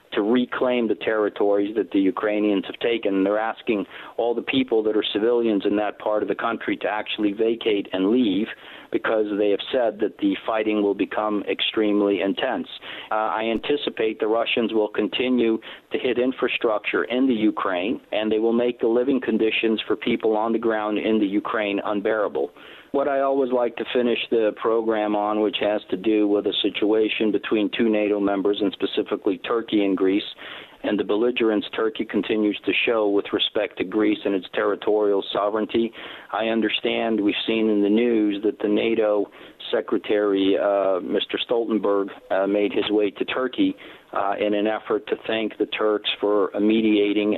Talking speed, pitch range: 175 wpm, 105-115 Hz